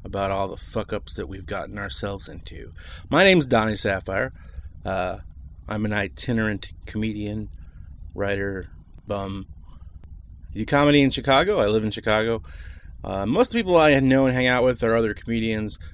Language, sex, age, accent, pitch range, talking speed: English, male, 30-49, American, 85-120 Hz, 160 wpm